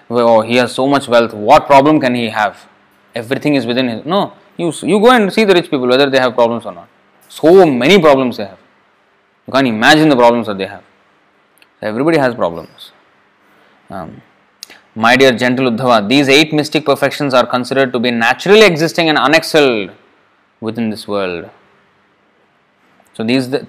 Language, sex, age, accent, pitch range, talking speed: English, male, 20-39, Indian, 115-145 Hz, 175 wpm